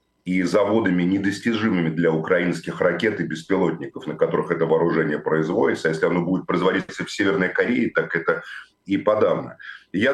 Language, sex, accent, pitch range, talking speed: Russian, male, native, 100-140 Hz, 155 wpm